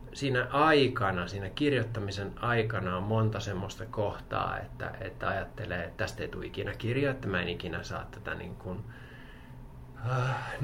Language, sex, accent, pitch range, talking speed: Finnish, male, native, 100-130 Hz, 145 wpm